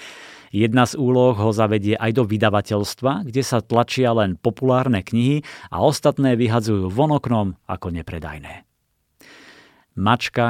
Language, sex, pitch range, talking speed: Slovak, male, 100-120 Hz, 125 wpm